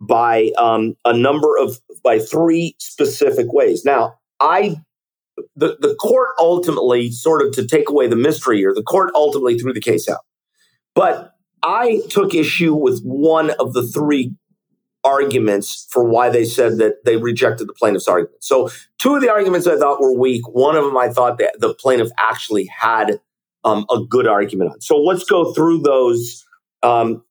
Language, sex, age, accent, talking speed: English, male, 50-69, American, 175 wpm